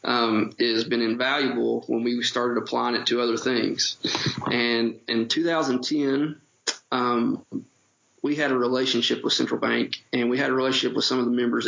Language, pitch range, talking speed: English, 120-130 Hz, 175 wpm